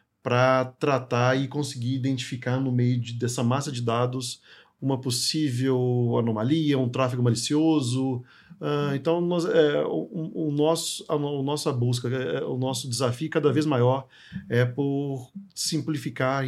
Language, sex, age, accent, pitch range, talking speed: Portuguese, male, 40-59, Brazilian, 125-150 Hz, 145 wpm